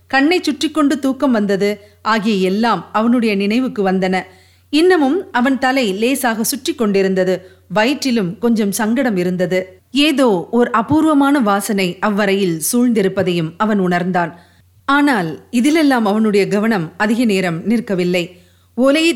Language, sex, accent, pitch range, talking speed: Tamil, female, native, 190-275 Hz, 100 wpm